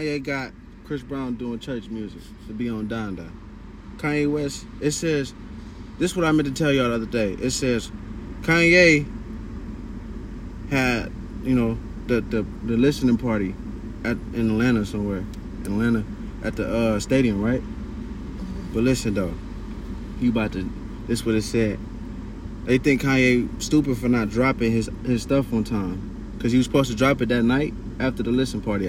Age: 20-39